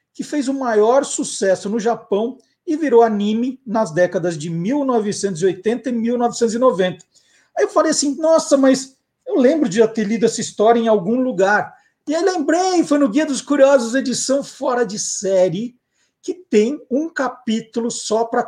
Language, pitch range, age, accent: Portuguese, 200-265 Hz, 50-69, Brazilian